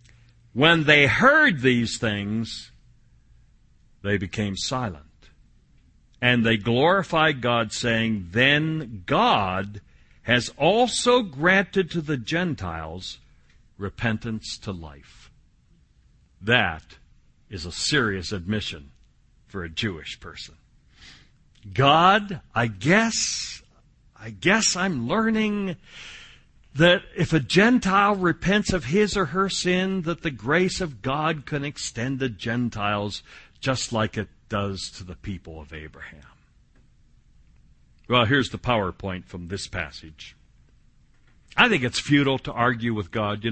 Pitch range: 100-155 Hz